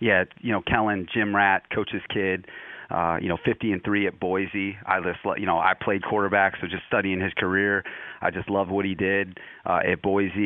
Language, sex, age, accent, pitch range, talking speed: English, male, 30-49, American, 95-105 Hz, 210 wpm